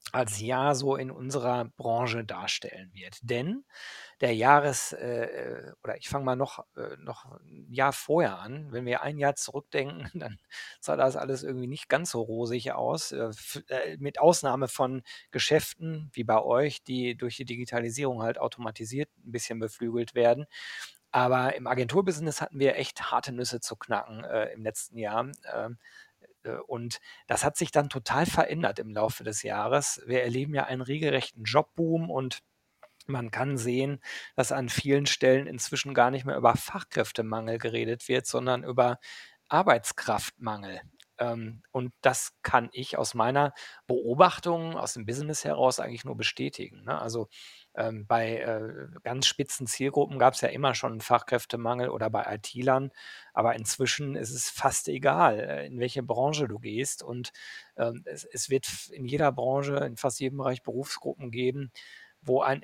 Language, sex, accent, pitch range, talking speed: German, male, German, 115-135 Hz, 150 wpm